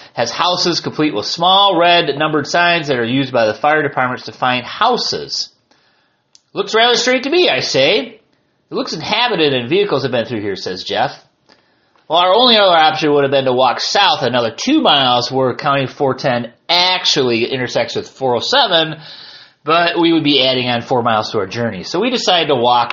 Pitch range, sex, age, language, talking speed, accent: 135-200 Hz, male, 30-49, English, 190 wpm, American